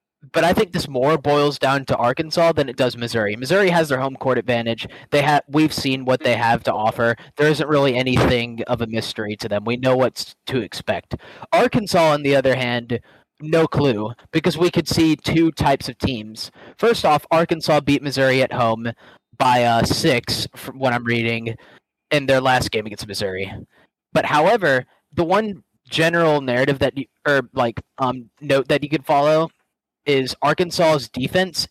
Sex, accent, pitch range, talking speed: male, American, 125-160 Hz, 185 wpm